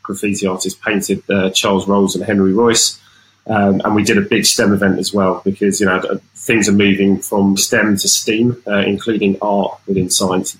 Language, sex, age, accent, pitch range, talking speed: English, male, 20-39, British, 95-115 Hz, 200 wpm